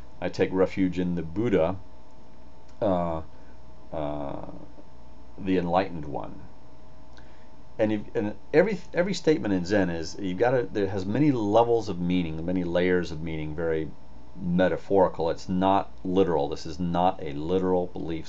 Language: English